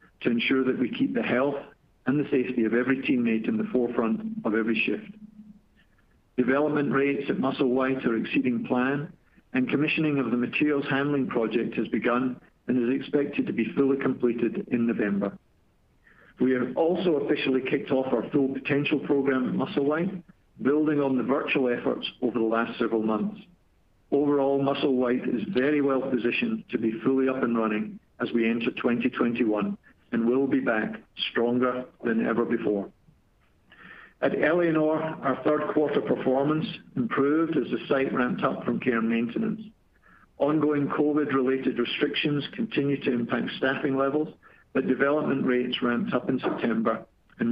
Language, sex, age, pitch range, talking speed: English, male, 50-69, 120-150 Hz, 155 wpm